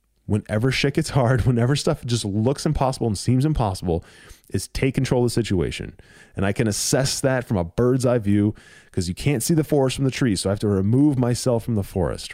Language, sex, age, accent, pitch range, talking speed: English, male, 20-39, American, 95-130 Hz, 225 wpm